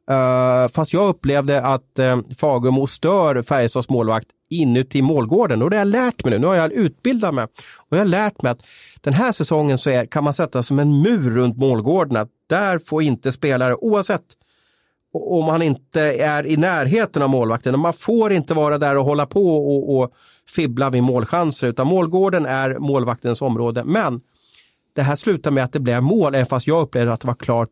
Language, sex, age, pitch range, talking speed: Swedish, male, 30-49, 125-155 Hz, 200 wpm